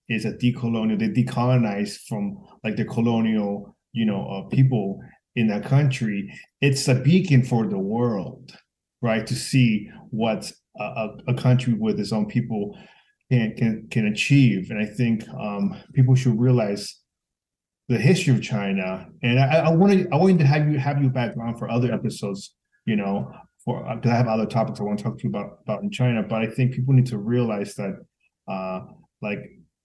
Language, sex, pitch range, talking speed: English, male, 110-130 Hz, 185 wpm